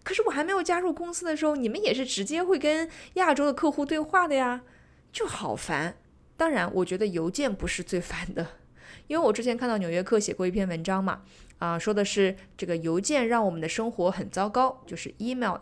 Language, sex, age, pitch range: Chinese, female, 20-39, 180-260 Hz